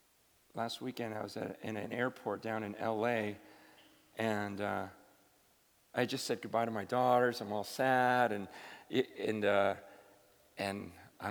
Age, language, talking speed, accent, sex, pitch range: 40-59, English, 145 wpm, American, male, 105-155 Hz